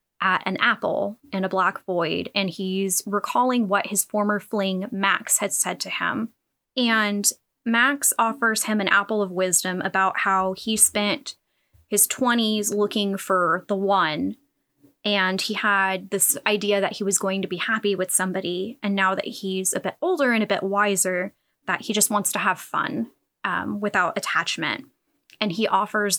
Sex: female